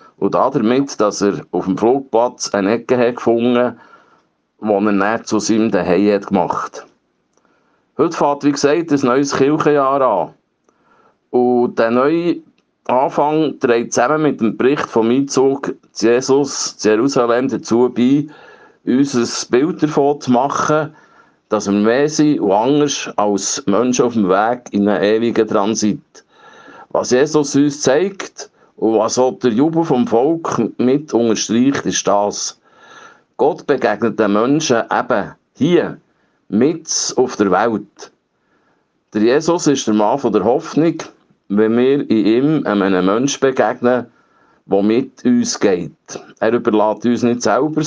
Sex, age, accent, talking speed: male, 50-69, Swiss, 145 wpm